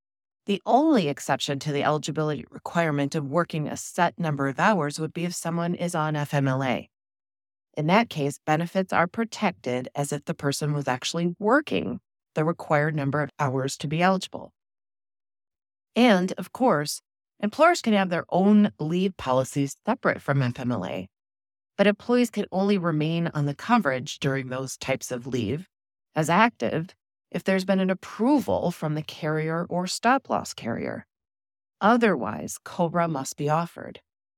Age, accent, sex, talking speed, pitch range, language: 30-49, American, female, 150 wpm, 140-195 Hz, English